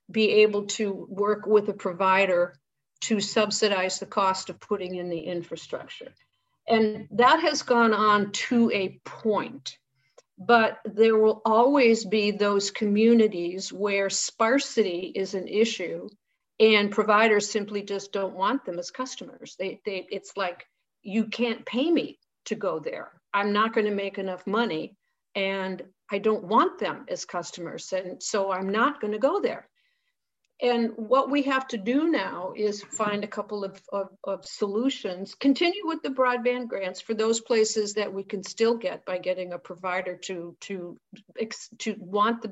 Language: English